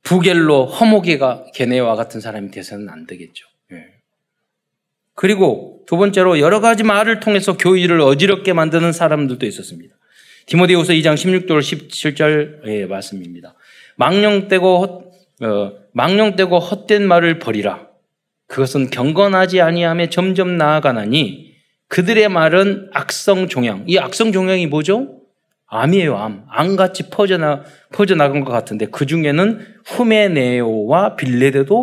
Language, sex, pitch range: Korean, male, 135-195 Hz